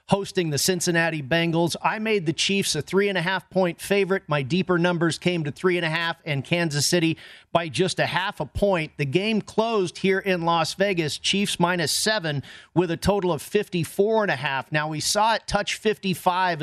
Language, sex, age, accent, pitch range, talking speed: English, male, 40-59, American, 160-195 Hz, 180 wpm